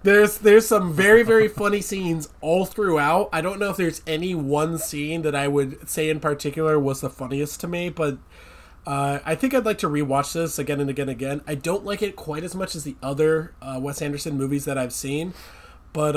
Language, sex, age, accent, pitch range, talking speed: English, male, 20-39, American, 140-180 Hz, 225 wpm